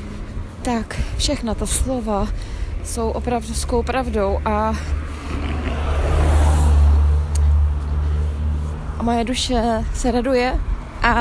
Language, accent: Czech, native